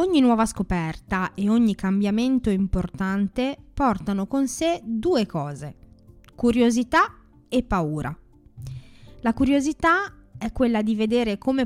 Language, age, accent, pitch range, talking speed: Italian, 20-39, native, 180-245 Hz, 115 wpm